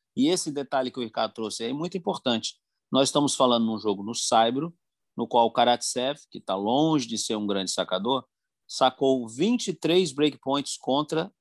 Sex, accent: male, Brazilian